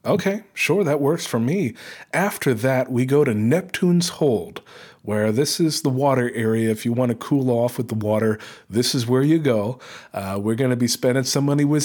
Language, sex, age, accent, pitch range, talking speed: English, male, 40-59, American, 115-145 Hz, 210 wpm